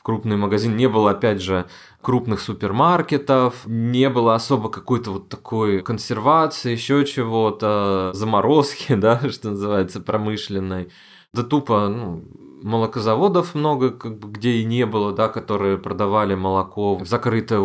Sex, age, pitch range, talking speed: male, 20-39, 100-125 Hz, 125 wpm